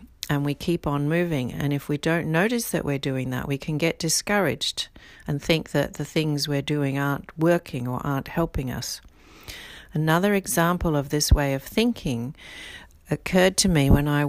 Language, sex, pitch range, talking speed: English, female, 140-165 Hz, 180 wpm